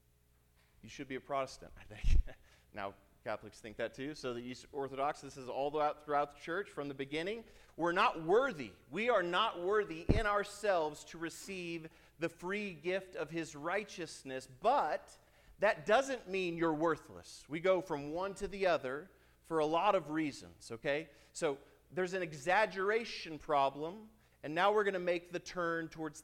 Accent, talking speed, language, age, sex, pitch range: American, 170 wpm, English, 40-59, male, 115-175 Hz